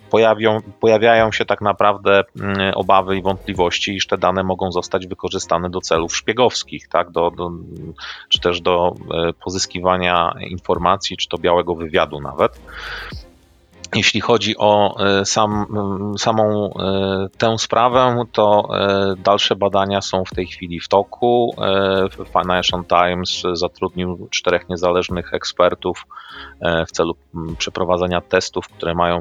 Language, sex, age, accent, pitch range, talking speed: Polish, male, 30-49, native, 85-100 Hz, 110 wpm